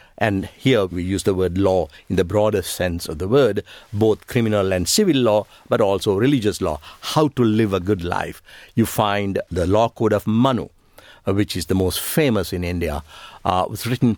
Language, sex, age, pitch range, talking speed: English, male, 60-79, 95-130 Hz, 195 wpm